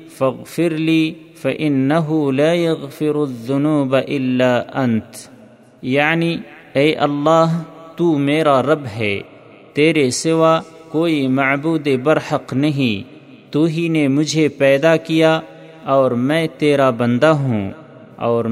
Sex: male